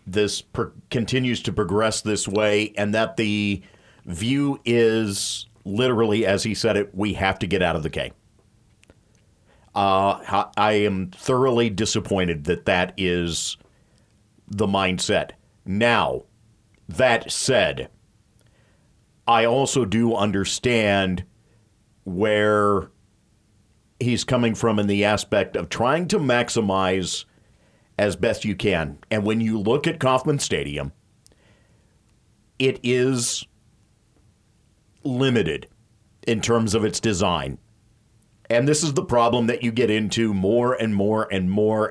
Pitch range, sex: 100-115 Hz, male